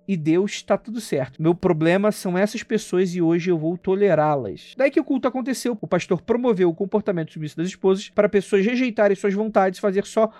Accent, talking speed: Brazilian, 210 wpm